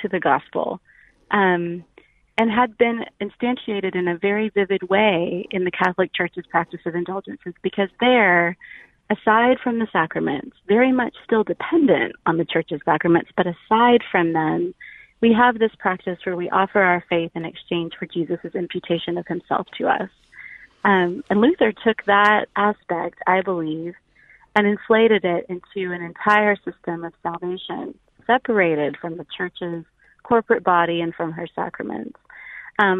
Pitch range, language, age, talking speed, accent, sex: 175-215 Hz, English, 30-49, 155 wpm, American, female